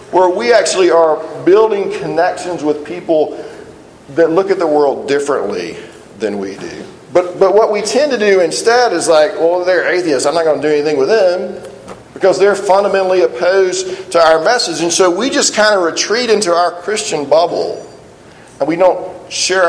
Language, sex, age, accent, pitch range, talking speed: English, male, 40-59, American, 135-180 Hz, 185 wpm